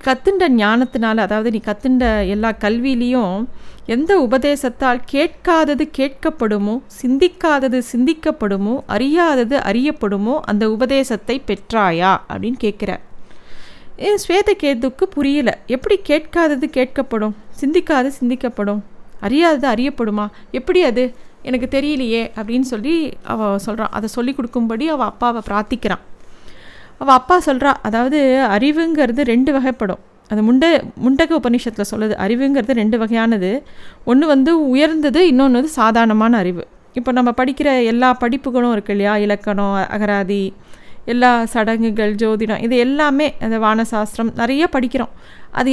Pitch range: 220-280 Hz